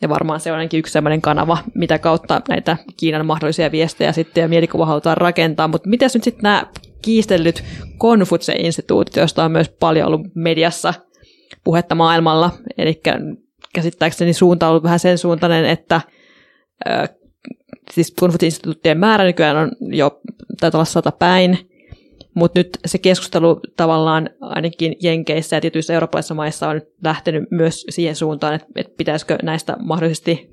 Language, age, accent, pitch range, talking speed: Finnish, 20-39, native, 155-175 Hz, 140 wpm